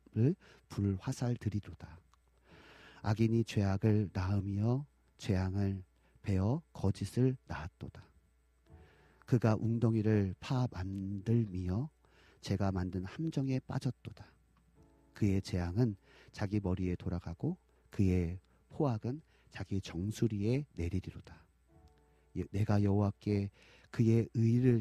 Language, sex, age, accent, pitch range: Korean, male, 40-59, native, 90-120 Hz